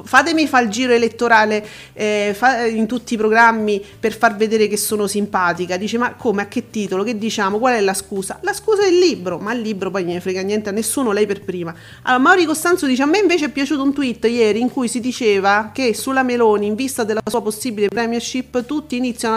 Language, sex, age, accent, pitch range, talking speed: Italian, female, 40-59, native, 210-260 Hz, 225 wpm